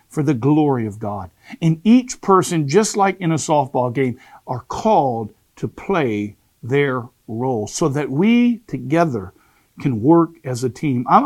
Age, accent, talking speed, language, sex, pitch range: 50-69, American, 160 wpm, English, male, 130-185 Hz